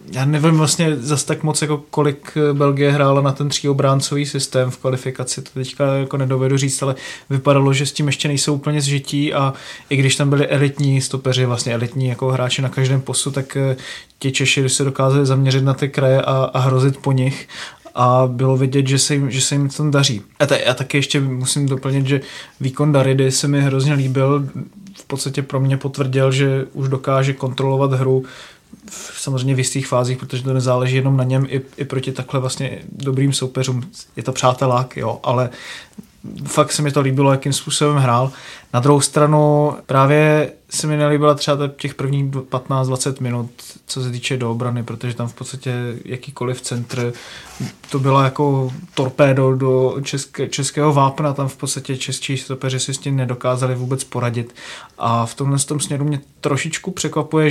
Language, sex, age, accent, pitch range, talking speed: Czech, male, 20-39, native, 130-145 Hz, 180 wpm